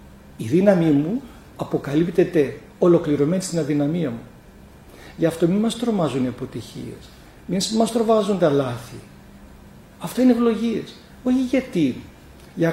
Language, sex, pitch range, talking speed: Greek, male, 145-195 Hz, 125 wpm